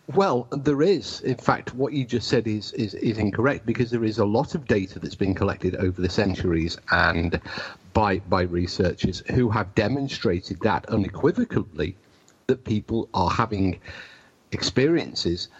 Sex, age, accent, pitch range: male, 50-69, British, 95-120 Hz